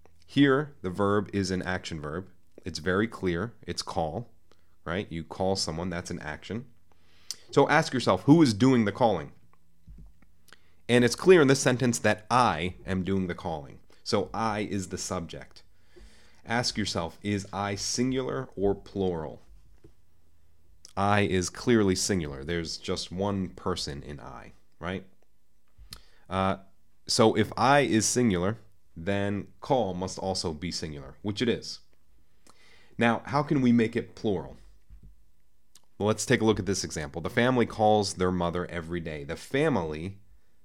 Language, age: English, 30-49